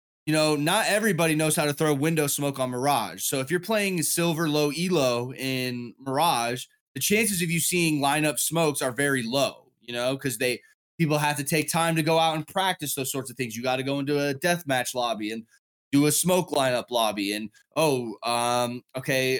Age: 20-39